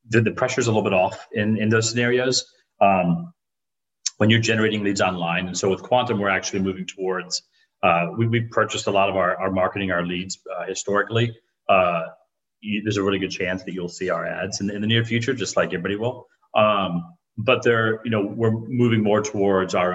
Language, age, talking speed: English, 30-49, 210 wpm